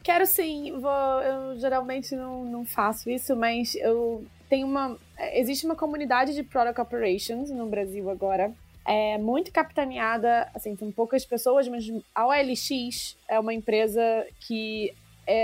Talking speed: 145 wpm